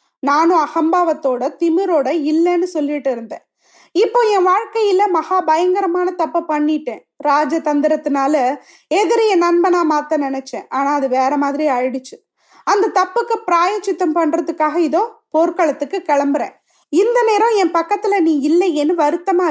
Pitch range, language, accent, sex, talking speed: 290-370 Hz, Tamil, native, female, 115 wpm